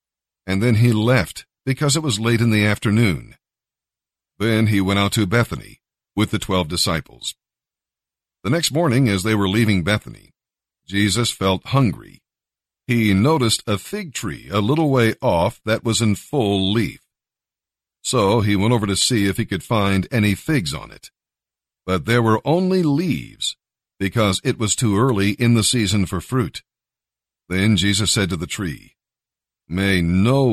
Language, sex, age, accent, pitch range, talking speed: English, male, 50-69, American, 100-125 Hz, 165 wpm